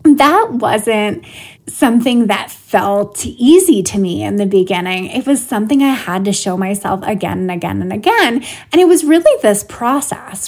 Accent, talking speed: American, 170 wpm